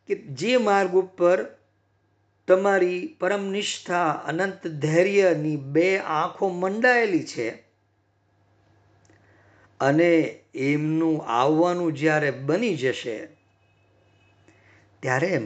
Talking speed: 40 wpm